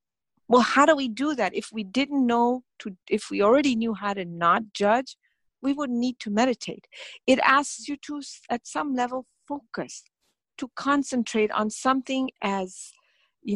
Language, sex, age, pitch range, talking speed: English, female, 50-69, 195-260 Hz, 170 wpm